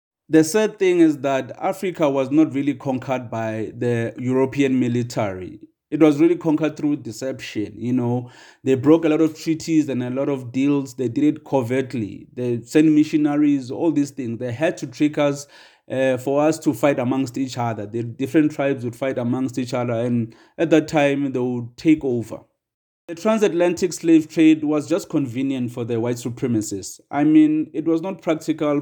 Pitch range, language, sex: 125-155 Hz, English, male